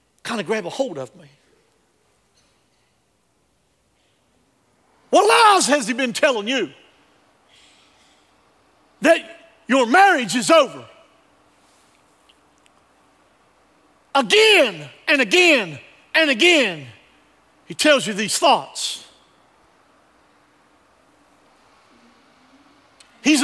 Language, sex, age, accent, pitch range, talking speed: English, male, 50-69, American, 225-330 Hz, 75 wpm